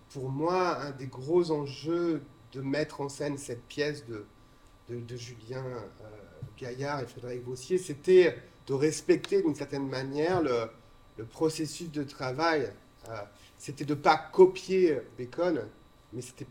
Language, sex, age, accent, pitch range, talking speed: French, male, 40-59, French, 130-170 Hz, 150 wpm